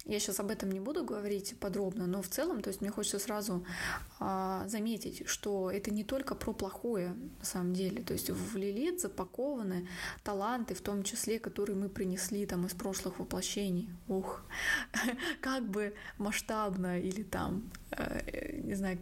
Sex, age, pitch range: female, 20-39, 190-220 Hz